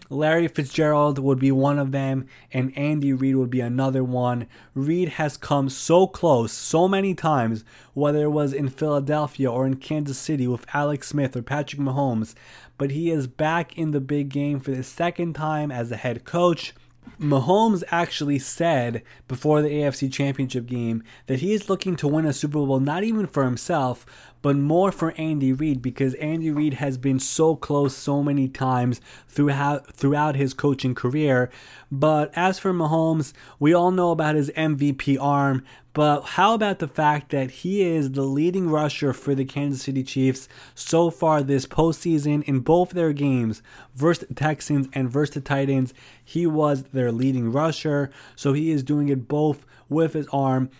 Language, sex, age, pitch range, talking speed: English, male, 20-39, 135-155 Hz, 175 wpm